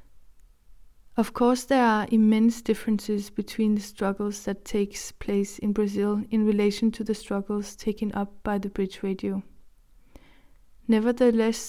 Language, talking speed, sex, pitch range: English, 135 wpm, female, 200-225 Hz